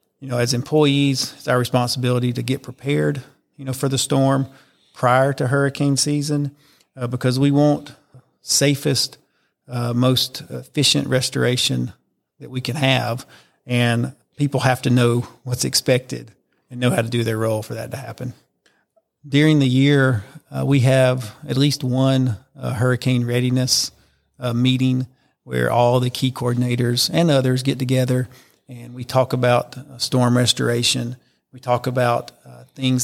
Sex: male